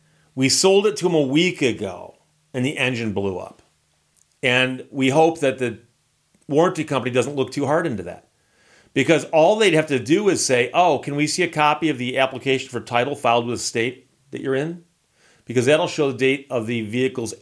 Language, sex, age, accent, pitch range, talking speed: English, male, 40-59, American, 120-160 Hz, 205 wpm